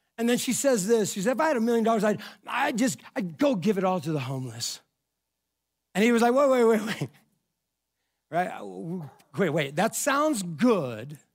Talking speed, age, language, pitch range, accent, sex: 200 wpm, 60-79, English, 190-260 Hz, American, male